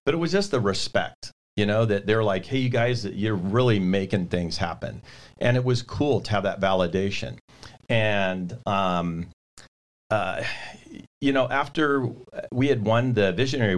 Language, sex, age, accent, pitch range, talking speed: English, male, 40-59, American, 95-120 Hz, 165 wpm